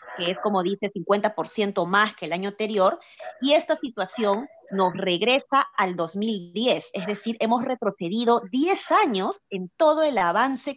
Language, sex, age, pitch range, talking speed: Spanish, female, 30-49, 185-230 Hz, 150 wpm